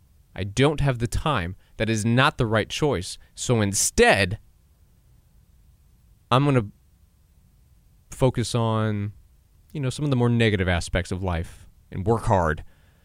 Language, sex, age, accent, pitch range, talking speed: English, male, 20-39, American, 85-125 Hz, 145 wpm